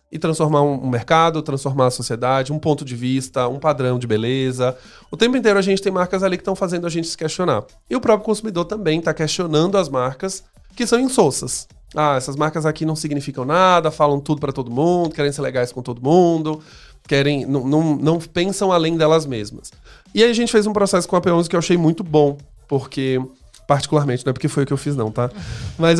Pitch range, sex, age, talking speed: 135-185 Hz, male, 20-39, 220 wpm